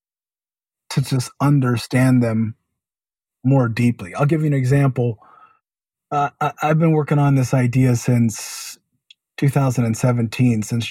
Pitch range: 110-140 Hz